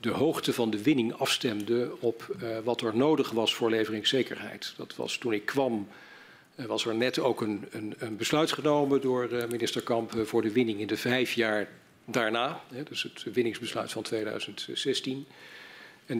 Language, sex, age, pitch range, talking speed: Dutch, male, 50-69, 115-135 Hz, 170 wpm